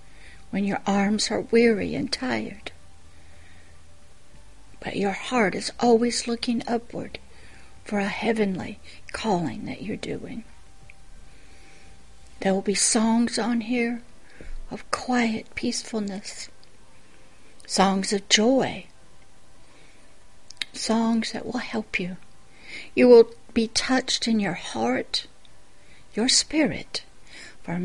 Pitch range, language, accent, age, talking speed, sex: 200-250 Hz, English, American, 60-79, 105 wpm, female